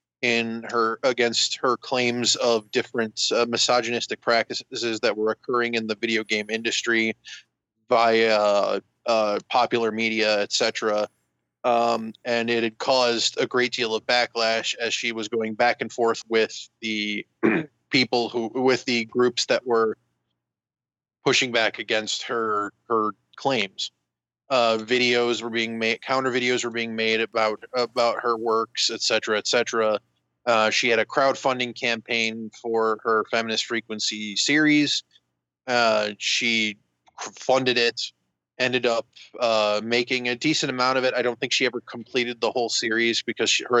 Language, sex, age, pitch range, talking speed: English, male, 20-39, 110-125 Hz, 150 wpm